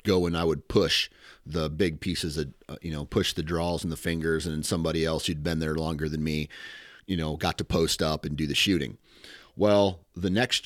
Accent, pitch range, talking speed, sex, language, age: American, 80-105 Hz, 225 wpm, male, English, 30-49